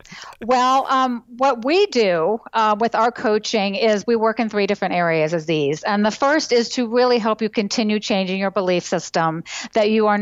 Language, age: English, 50-69